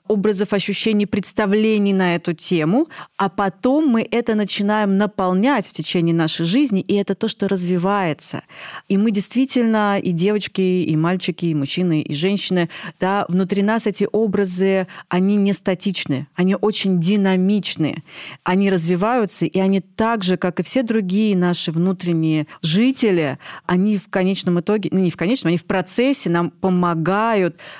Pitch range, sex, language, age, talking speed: 170-210 Hz, female, Russian, 30-49, 150 wpm